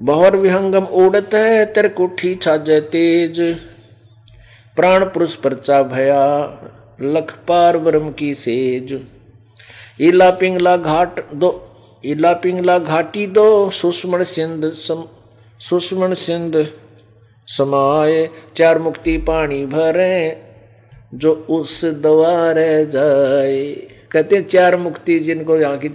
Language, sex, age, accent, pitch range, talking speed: Hindi, male, 50-69, native, 115-175 Hz, 100 wpm